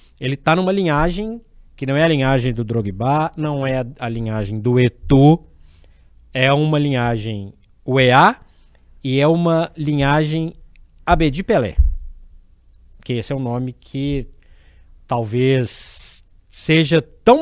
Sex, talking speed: male, 125 wpm